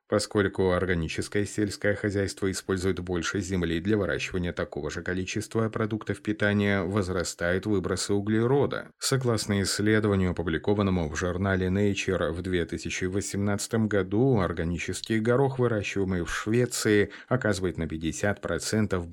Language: Russian